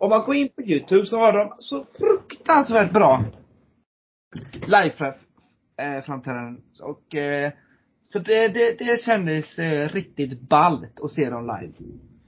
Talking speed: 120 wpm